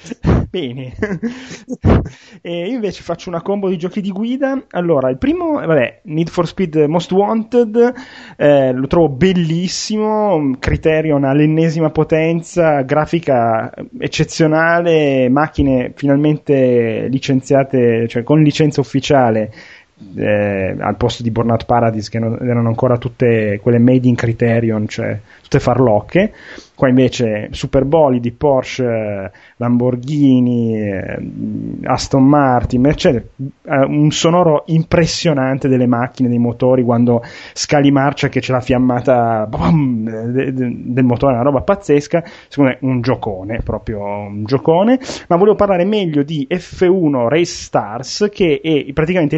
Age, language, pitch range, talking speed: 30-49, Italian, 120-165 Hz, 120 wpm